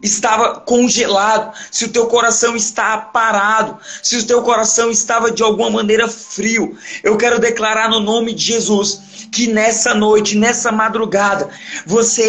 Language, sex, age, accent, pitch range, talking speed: Portuguese, male, 20-39, Brazilian, 220-240 Hz, 145 wpm